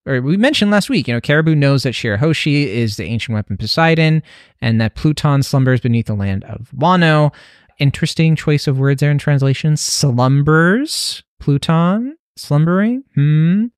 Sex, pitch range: male, 120-165 Hz